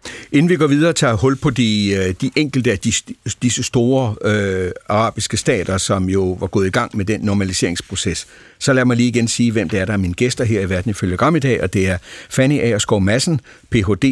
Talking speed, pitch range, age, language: 225 wpm, 95-125 Hz, 60-79, Danish